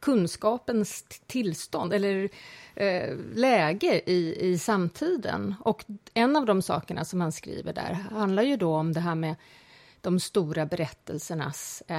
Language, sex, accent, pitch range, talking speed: English, female, Swedish, 170-210 Hz, 130 wpm